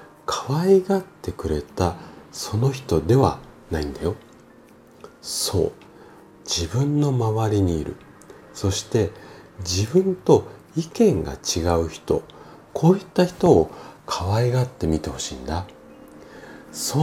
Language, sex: Japanese, male